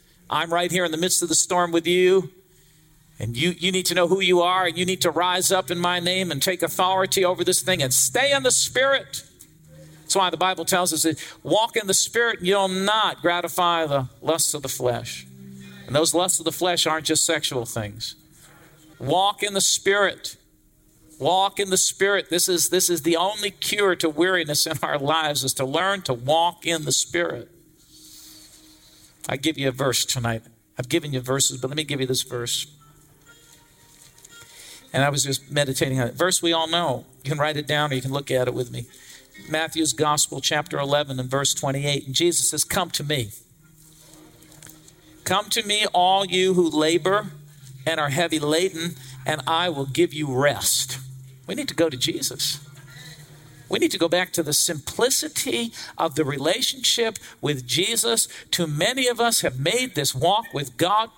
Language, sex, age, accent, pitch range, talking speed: English, male, 50-69, American, 140-180 Hz, 190 wpm